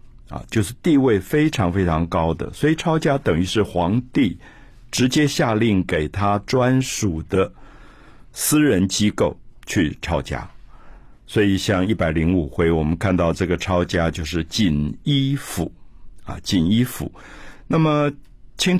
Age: 50-69